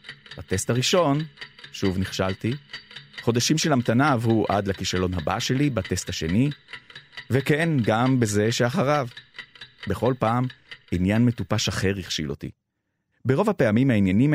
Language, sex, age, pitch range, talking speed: Hebrew, male, 30-49, 100-135 Hz, 115 wpm